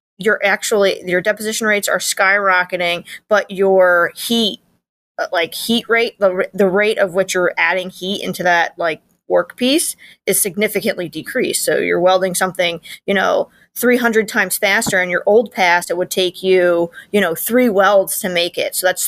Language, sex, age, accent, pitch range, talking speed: English, female, 20-39, American, 180-215 Hz, 175 wpm